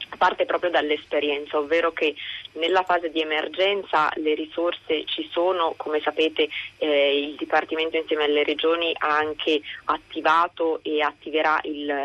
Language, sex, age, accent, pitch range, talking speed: Italian, female, 20-39, native, 150-170 Hz, 135 wpm